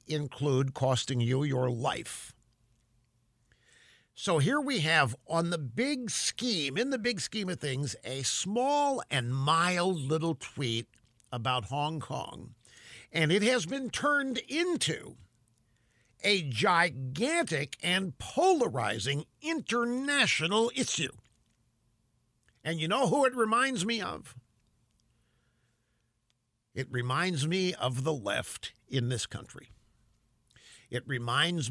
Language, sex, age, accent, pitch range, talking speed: English, male, 50-69, American, 120-195 Hz, 110 wpm